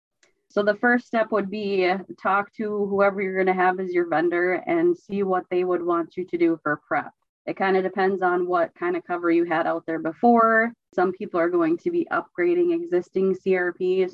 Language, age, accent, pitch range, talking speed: English, 20-39, American, 170-240 Hz, 210 wpm